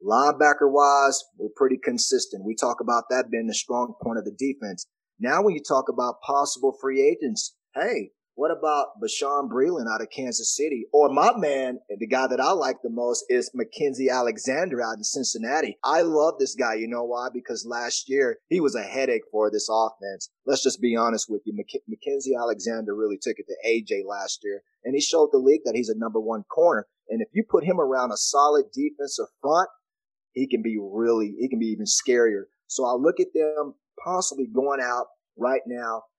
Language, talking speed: English, 200 wpm